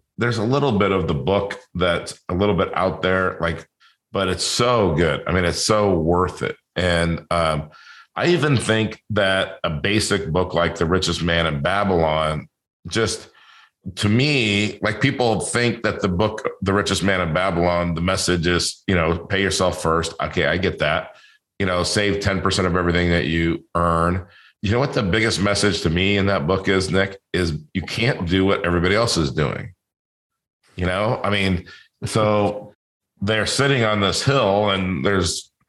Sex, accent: male, American